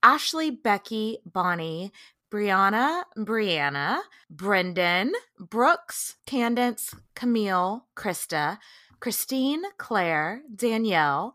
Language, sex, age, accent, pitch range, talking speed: English, female, 20-39, American, 190-275 Hz, 75 wpm